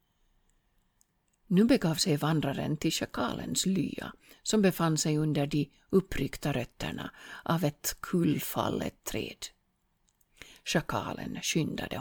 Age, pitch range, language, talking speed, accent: 50-69, 155-210 Hz, Swedish, 100 wpm, Finnish